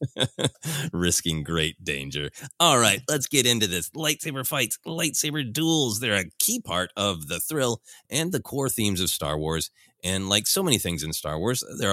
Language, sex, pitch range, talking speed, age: English, male, 80-120 Hz, 180 wpm, 30-49